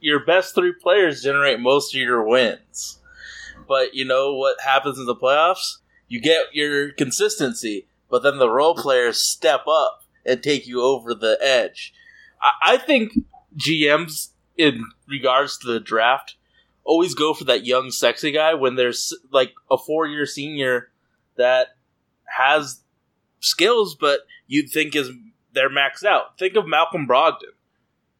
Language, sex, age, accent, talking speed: English, male, 20-39, American, 145 wpm